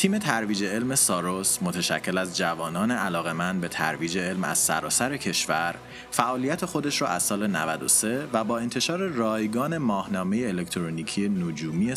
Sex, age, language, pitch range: male, 30-49, Persian, 95-125 Hz